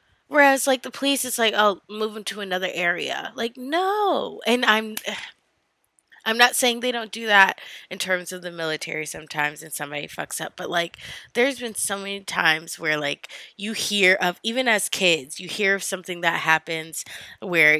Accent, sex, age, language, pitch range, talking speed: American, female, 20-39, English, 180-225 Hz, 185 wpm